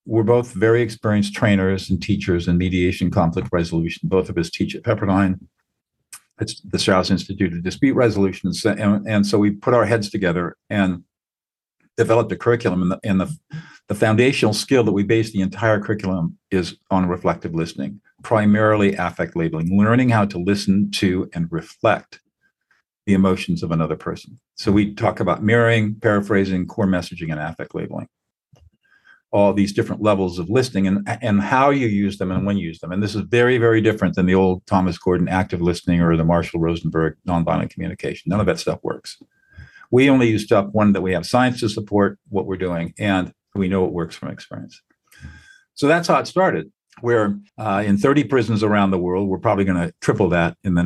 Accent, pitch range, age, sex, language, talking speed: American, 90-110 Hz, 50-69, male, English, 185 wpm